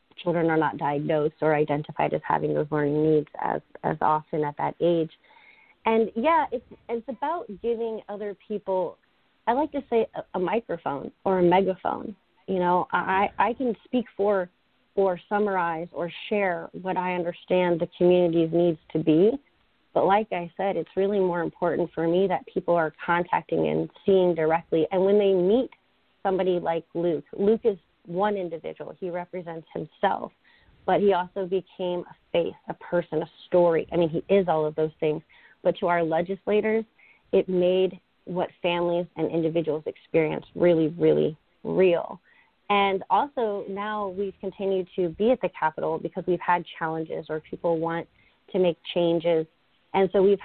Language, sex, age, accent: English, female, 30-49, American